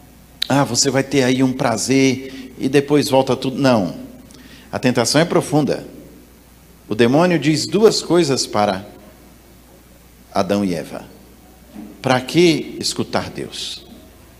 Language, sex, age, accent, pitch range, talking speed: Portuguese, male, 50-69, Brazilian, 105-145 Hz, 120 wpm